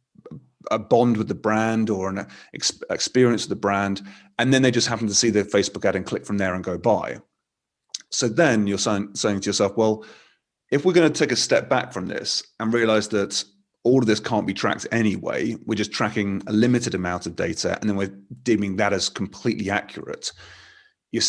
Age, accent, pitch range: 30-49, British, 100-120 Hz